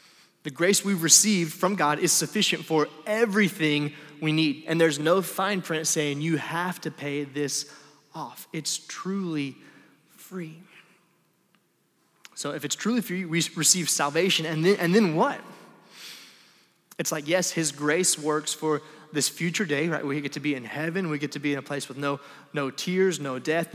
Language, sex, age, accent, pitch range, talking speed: English, male, 20-39, American, 145-175 Hz, 180 wpm